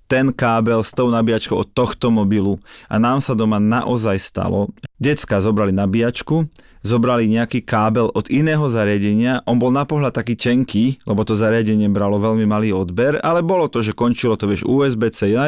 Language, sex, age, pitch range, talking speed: Slovak, male, 30-49, 105-125 Hz, 175 wpm